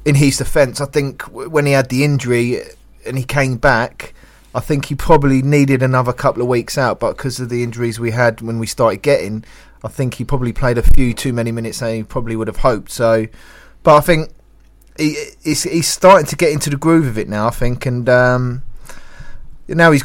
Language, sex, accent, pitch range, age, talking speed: English, male, British, 115-140 Hz, 20-39, 220 wpm